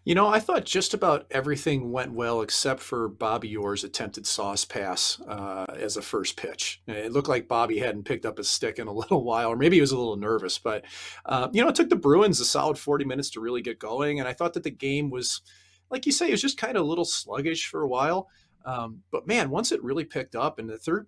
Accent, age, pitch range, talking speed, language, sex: American, 40-59, 115-165 Hz, 255 wpm, English, male